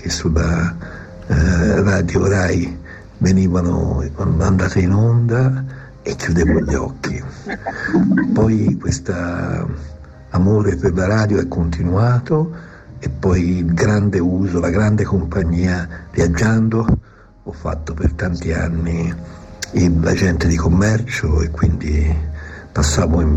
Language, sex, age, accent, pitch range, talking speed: Italian, male, 60-79, native, 80-100 Hz, 105 wpm